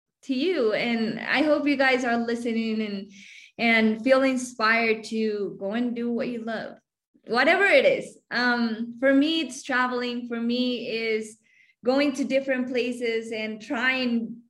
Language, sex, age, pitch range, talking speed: English, female, 20-39, 225-275 Hz, 155 wpm